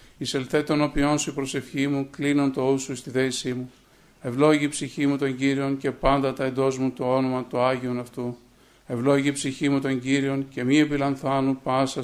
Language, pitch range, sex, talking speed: Greek, 130-140 Hz, male, 185 wpm